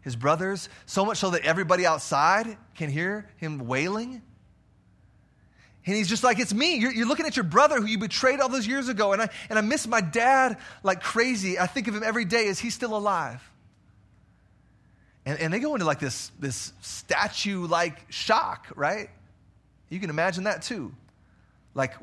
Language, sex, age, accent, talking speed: English, male, 30-49, American, 185 wpm